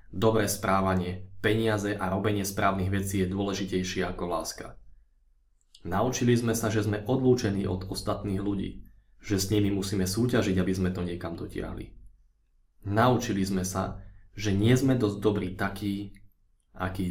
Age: 20-39